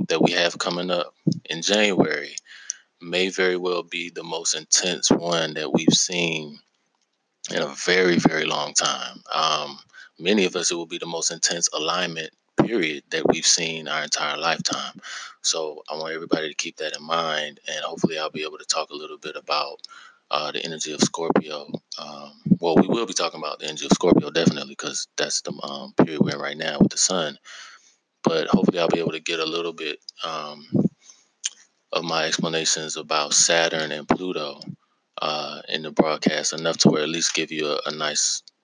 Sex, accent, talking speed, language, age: male, American, 190 wpm, English, 20-39